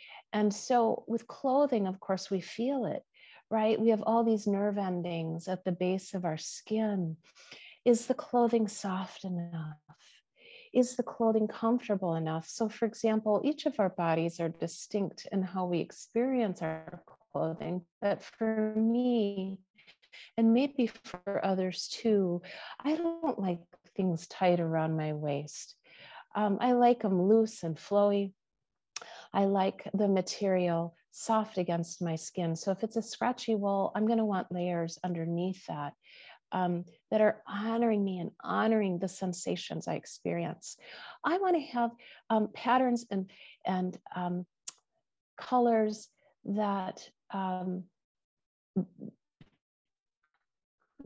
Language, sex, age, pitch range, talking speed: English, female, 40-59, 180-225 Hz, 135 wpm